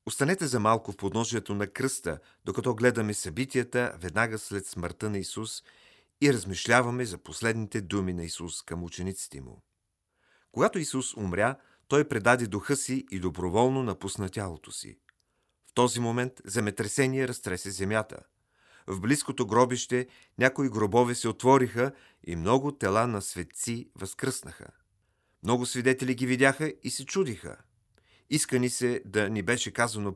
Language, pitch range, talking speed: Bulgarian, 100-125 Hz, 135 wpm